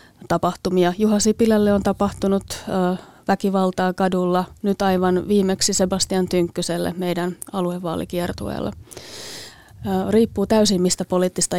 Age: 30-49